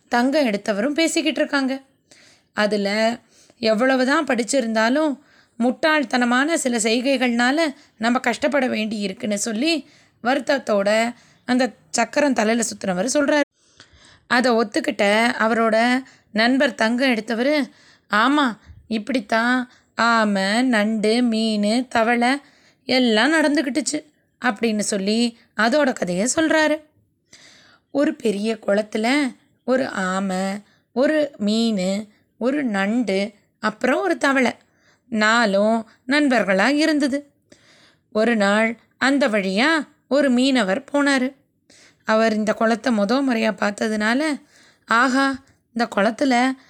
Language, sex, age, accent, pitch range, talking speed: Tamil, female, 20-39, native, 220-275 Hz, 90 wpm